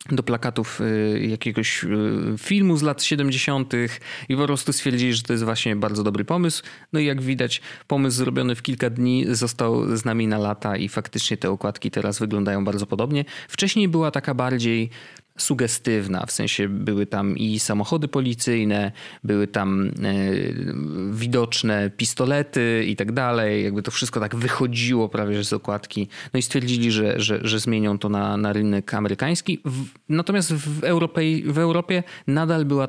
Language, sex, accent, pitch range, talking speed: Polish, male, native, 105-145 Hz, 155 wpm